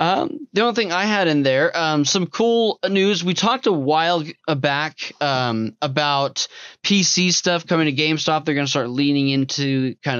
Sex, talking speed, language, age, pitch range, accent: male, 180 wpm, English, 20-39, 140-180 Hz, American